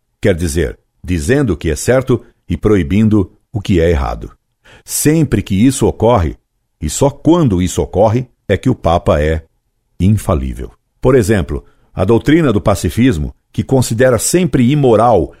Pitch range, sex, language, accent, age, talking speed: 85-120 Hz, male, Portuguese, Brazilian, 60-79, 150 wpm